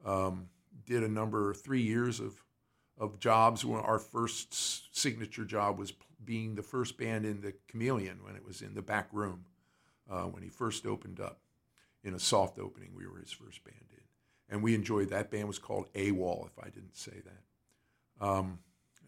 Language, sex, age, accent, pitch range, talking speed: English, male, 50-69, American, 100-125 Hz, 180 wpm